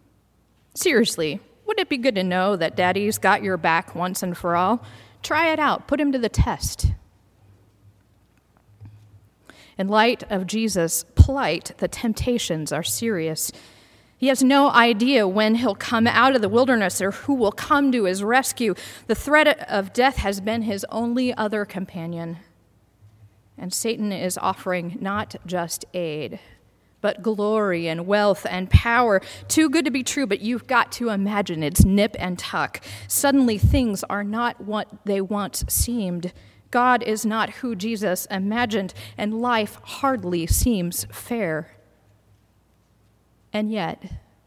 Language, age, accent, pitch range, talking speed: English, 40-59, American, 170-230 Hz, 145 wpm